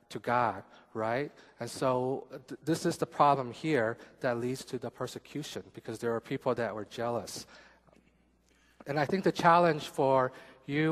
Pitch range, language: 115-150 Hz, Korean